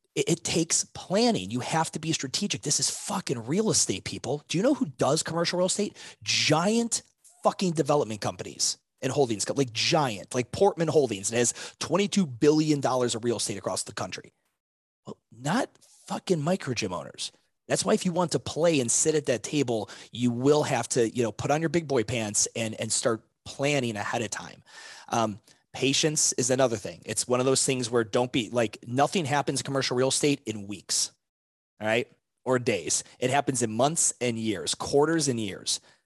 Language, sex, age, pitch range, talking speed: English, male, 30-49, 115-160 Hz, 195 wpm